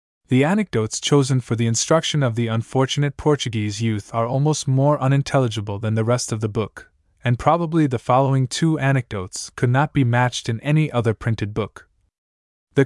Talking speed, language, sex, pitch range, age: 175 wpm, English, male, 110-135 Hz, 20-39